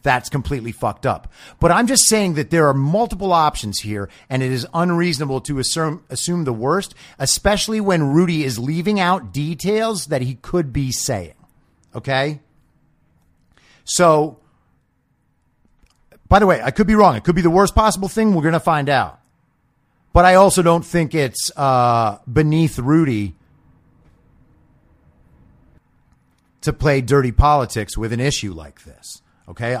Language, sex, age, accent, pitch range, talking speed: English, male, 40-59, American, 125-170 Hz, 150 wpm